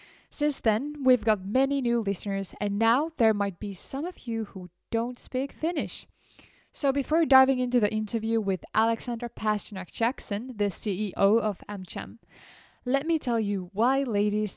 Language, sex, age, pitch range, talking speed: Finnish, female, 10-29, 200-250 Hz, 155 wpm